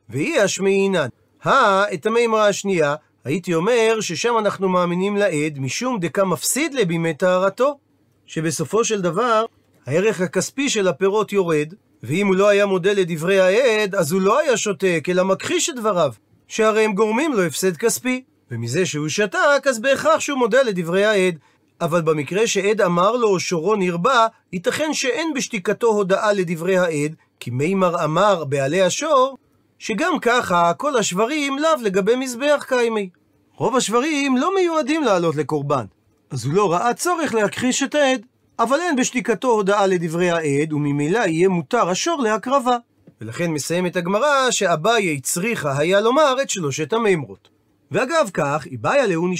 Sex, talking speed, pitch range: male, 150 wpm, 170-240 Hz